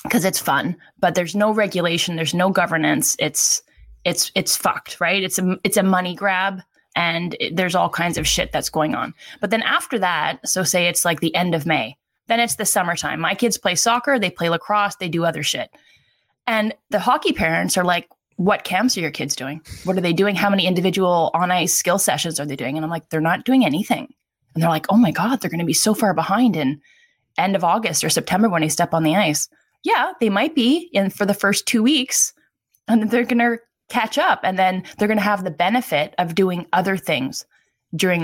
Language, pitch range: English, 165-210 Hz